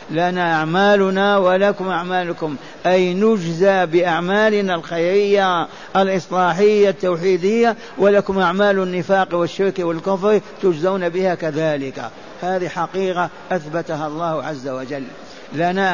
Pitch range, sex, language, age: 165-190 Hz, male, Arabic, 50-69